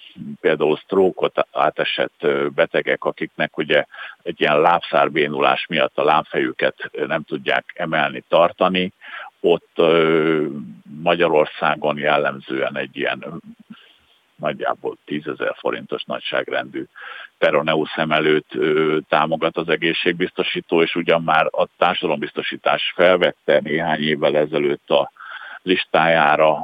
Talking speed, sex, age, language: 90 wpm, male, 50-69, Hungarian